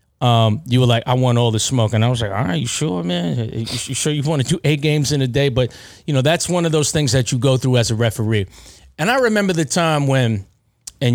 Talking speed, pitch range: 275 wpm, 110-145 Hz